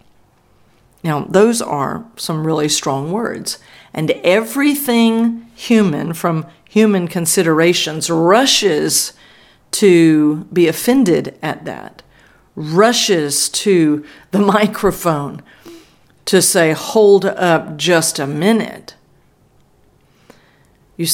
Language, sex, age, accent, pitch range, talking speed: English, female, 50-69, American, 155-200 Hz, 90 wpm